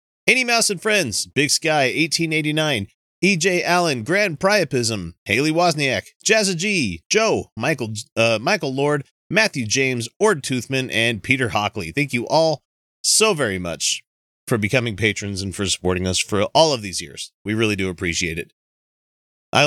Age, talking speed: 30-49, 155 wpm